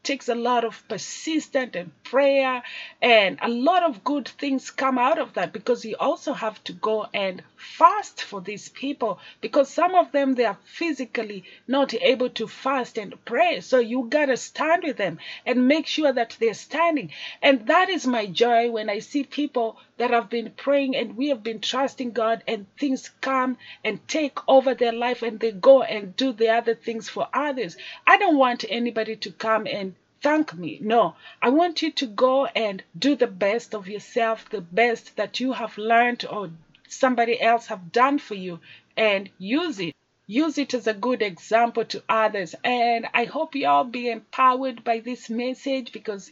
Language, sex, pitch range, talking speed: Italian, female, 220-275 Hz, 190 wpm